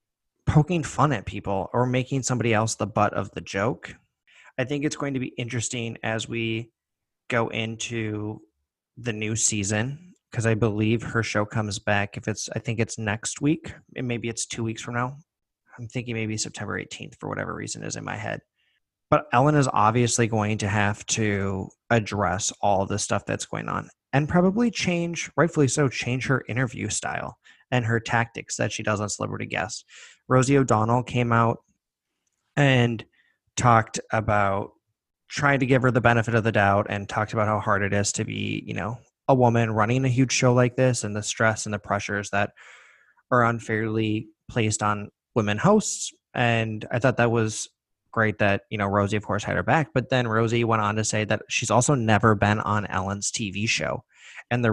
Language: English